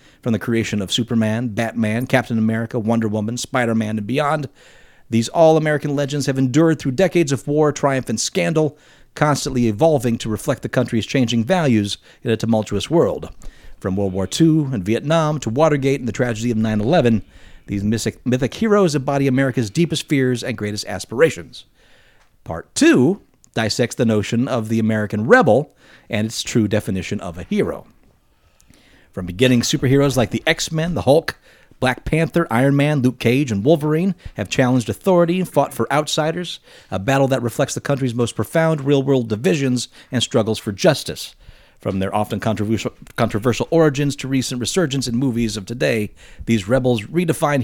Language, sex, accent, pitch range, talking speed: English, male, American, 110-145 Hz, 160 wpm